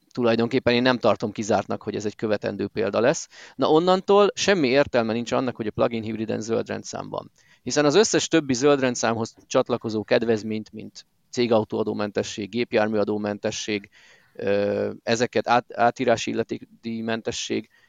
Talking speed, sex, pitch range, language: 140 wpm, male, 110-140 Hz, Hungarian